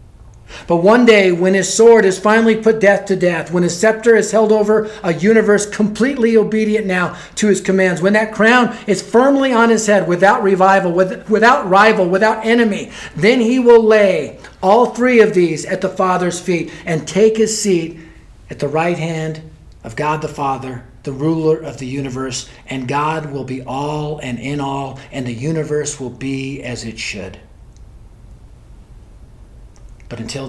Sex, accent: male, American